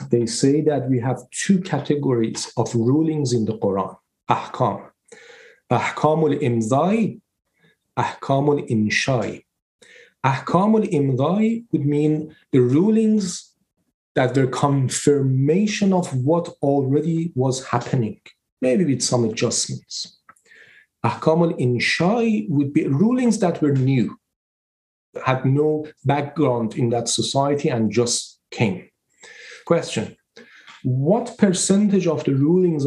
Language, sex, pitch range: English, male, 130-205 Hz